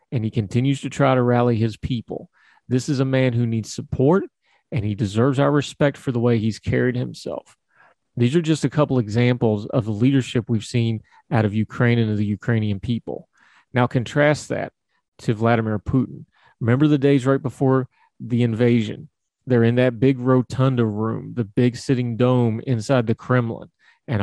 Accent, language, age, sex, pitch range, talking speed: American, English, 30-49, male, 115-135 Hz, 180 wpm